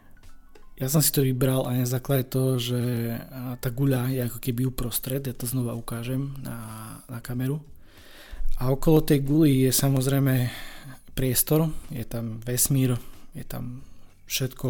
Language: Slovak